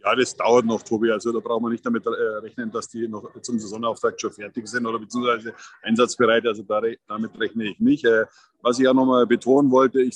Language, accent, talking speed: German, German, 230 wpm